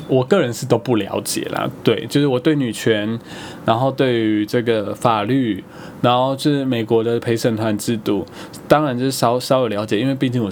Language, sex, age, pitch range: Chinese, male, 20-39, 115-145 Hz